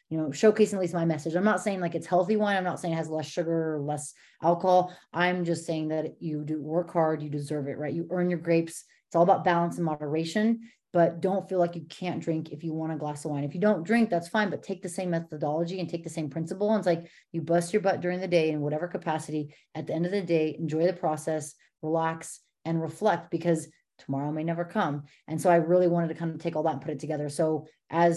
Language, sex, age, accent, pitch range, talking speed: English, female, 30-49, American, 155-180 Hz, 260 wpm